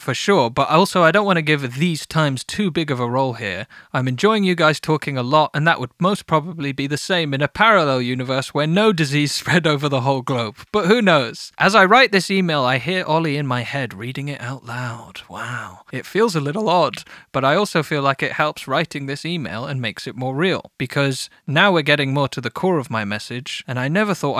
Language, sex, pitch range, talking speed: English, male, 130-160 Hz, 240 wpm